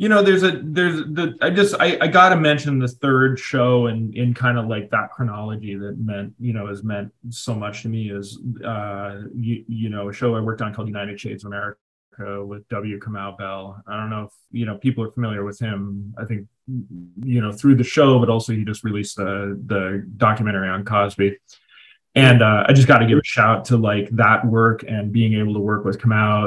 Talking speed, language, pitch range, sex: 225 wpm, English, 105-125 Hz, male